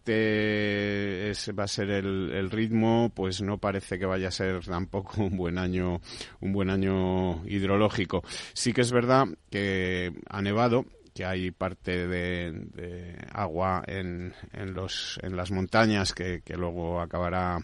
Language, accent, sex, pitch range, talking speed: Spanish, Spanish, male, 90-105 Hz, 155 wpm